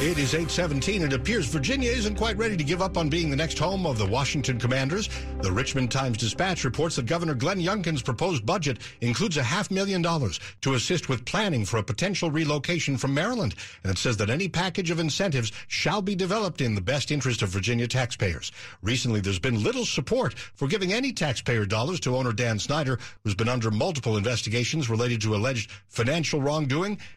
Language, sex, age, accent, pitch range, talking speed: English, male, 60-79, American, 110-155 Hz, 195 wpm